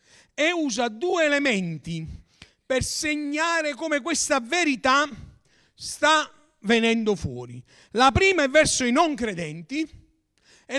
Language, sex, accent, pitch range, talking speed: Italian, male, native, 245-300 Hz, 110 wpm